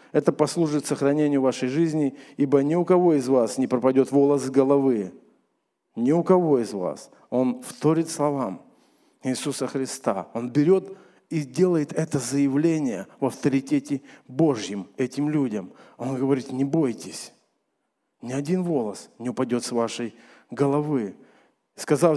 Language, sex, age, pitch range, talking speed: Russian, male, 40-59, 135-185 Hz, 135 wpm